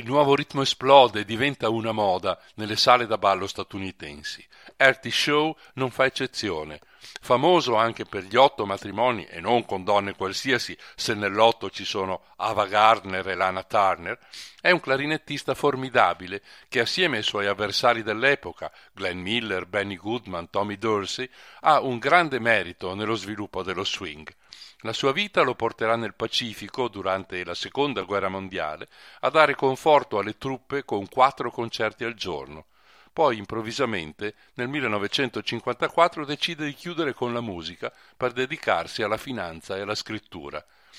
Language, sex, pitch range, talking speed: Italian, male, 100-130 Hz, 150 wpm